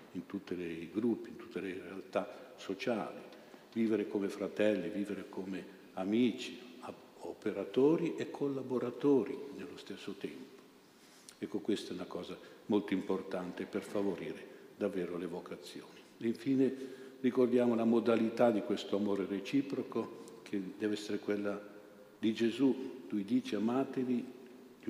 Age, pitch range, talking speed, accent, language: 50-69, 100-120 Hz, 130 wpm, native, Italian